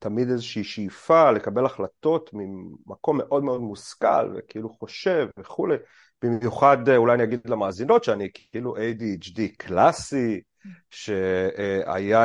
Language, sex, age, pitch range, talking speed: Hebrew, male, 30-49, 110-155 Hz, 110 wpm